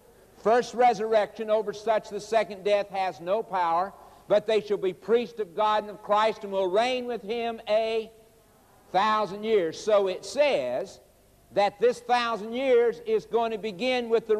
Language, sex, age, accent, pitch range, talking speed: English, male, 60-79, American, 185-225 Hz, 170 wpm